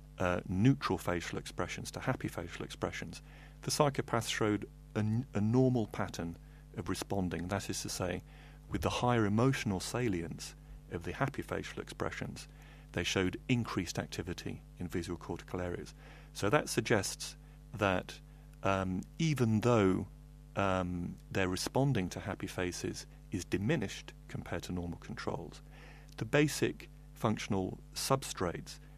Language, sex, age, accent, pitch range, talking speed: English, male, 40-59, British, 95-145 Hz, 130 wpm